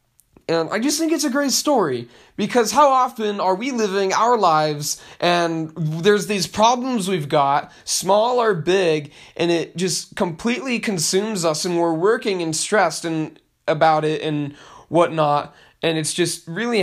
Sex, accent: male, American